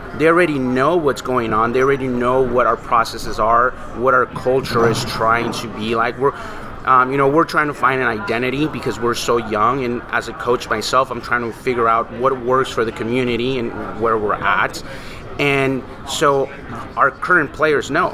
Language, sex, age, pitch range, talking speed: English, male, 30-49, 125-145 Hz, 200 wpm